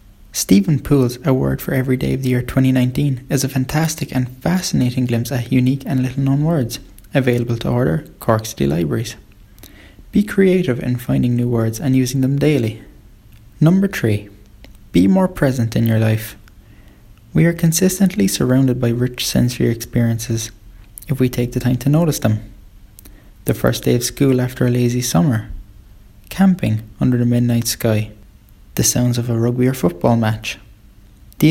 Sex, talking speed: male, 160 wpm